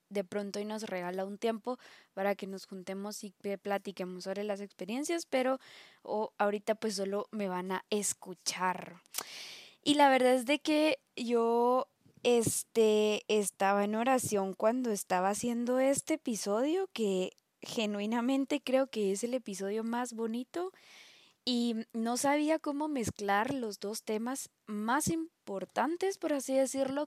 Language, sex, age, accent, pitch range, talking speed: Spanish, female, 20-39, Mexican, 200-240 Hz, 140 wpm